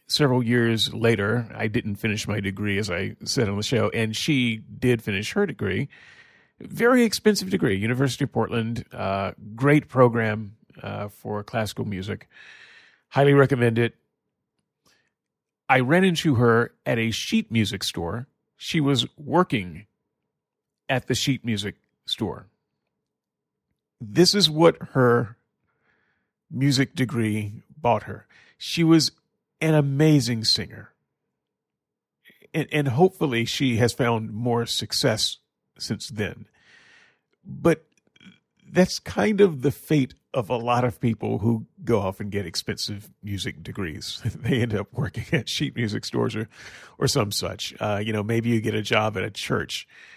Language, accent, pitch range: English, American, 105-140 Hz